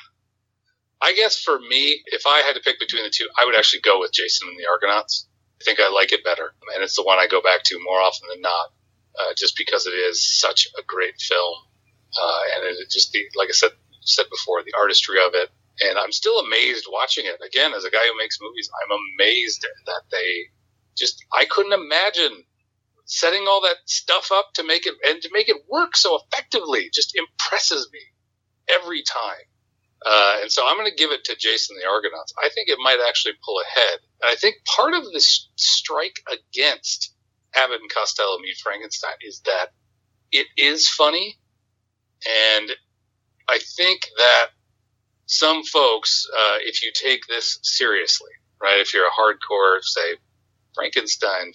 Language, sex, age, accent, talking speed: English, male, 40-59, American, 185 wpm